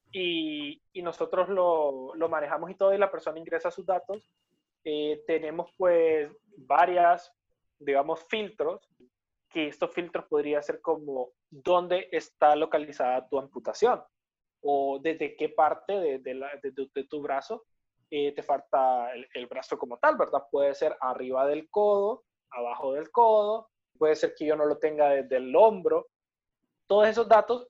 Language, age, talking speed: Spanish, 20-39, 155 wpm